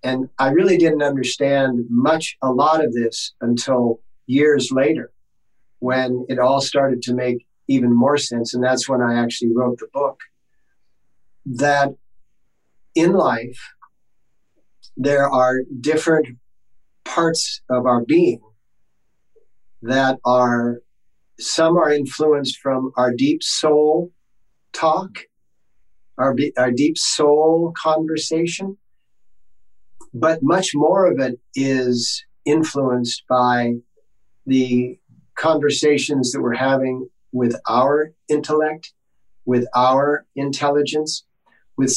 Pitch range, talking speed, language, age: 125-150 Hz, 105 wpm, English, 50-69